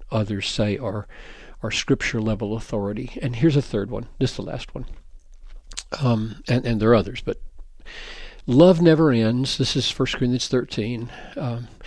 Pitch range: 120-165 Hz